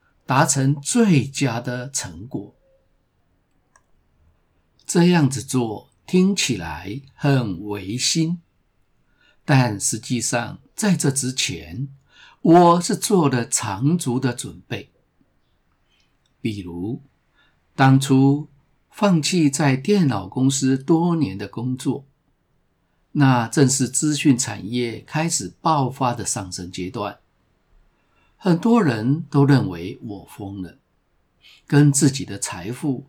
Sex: male